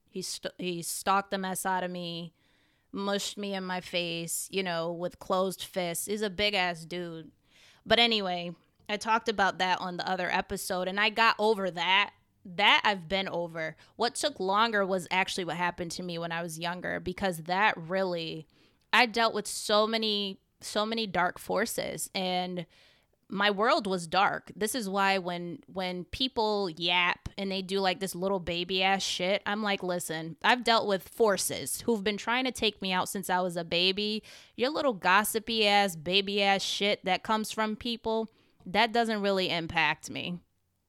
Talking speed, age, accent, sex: 180 wpm, 20-39, American, female